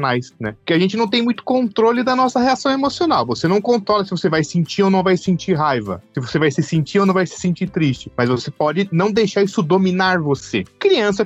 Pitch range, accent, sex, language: 145-205 Hz, Brazilian, male, Portuguese